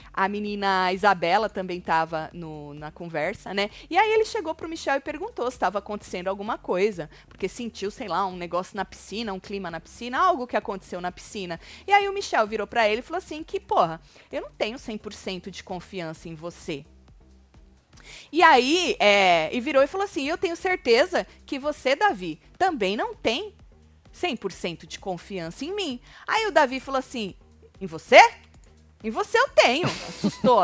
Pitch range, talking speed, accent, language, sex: 175-280 Hz, 180 wpm, Brazilian, Portuguese, female